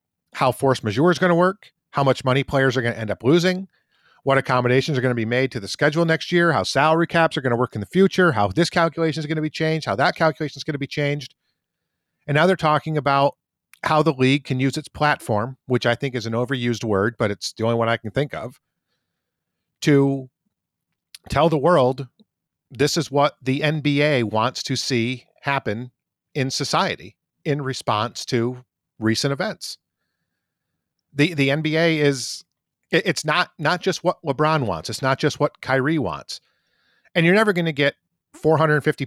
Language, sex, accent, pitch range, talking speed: English, male, American, 125-160 Hz, 195 wpm